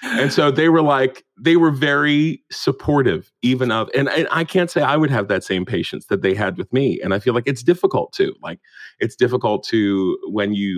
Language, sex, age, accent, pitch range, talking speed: English, male, 30-49, American, 95-120 Hz, 225 wpm